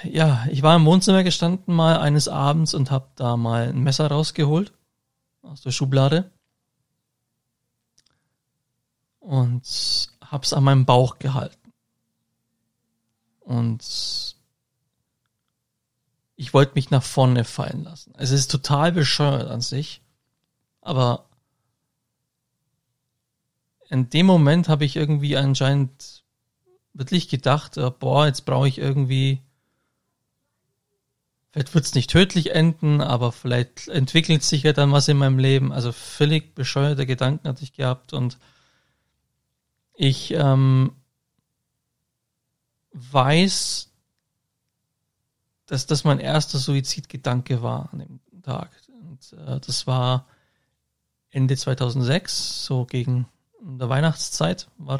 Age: 40-59